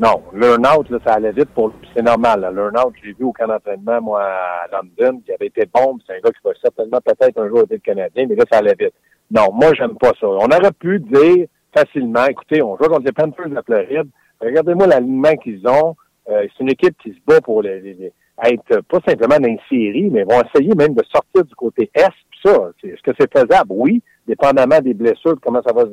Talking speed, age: 245 wpm, 60-79